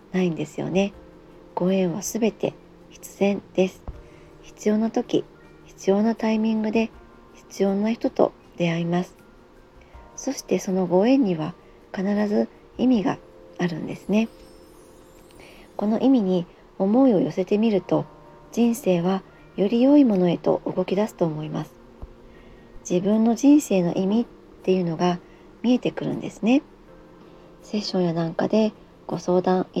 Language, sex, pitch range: Japanese, male, 175-220 Hz